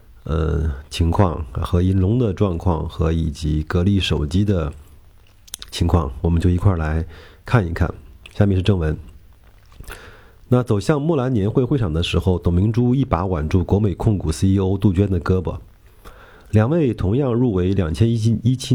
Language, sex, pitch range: Chinese, male, 85-115 Hz